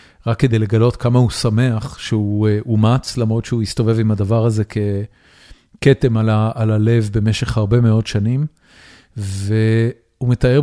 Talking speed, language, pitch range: 140 wpm, Hebrew, 110-125 Hz